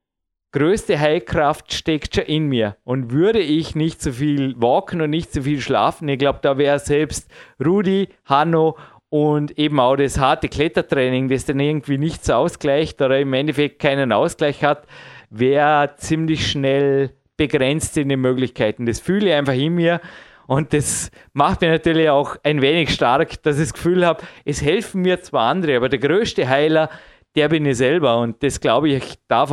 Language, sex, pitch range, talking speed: German, male, 135-155 Hz, 180 wpm